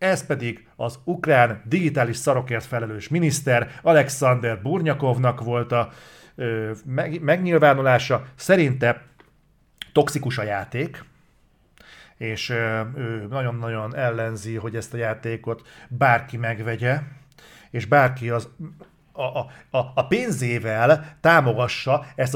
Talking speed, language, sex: 100 wpm, Hungarian, male